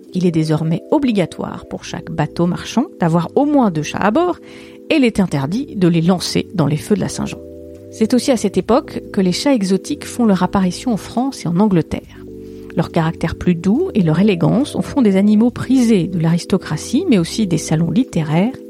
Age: 40-59